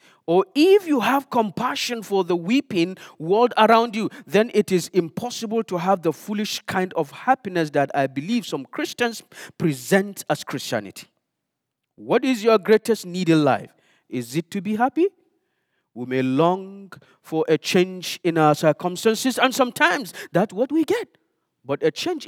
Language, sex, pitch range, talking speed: English, male, 150-225 Hz, 160 wpm